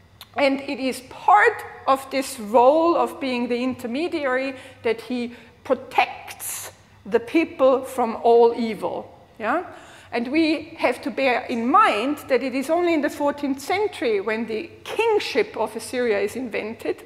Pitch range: 230-315 Hz